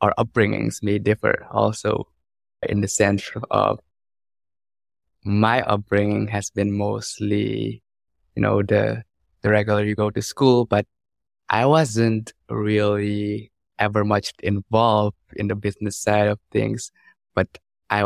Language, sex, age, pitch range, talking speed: English, male, 20-39, 100-110 Hz, 125 wpm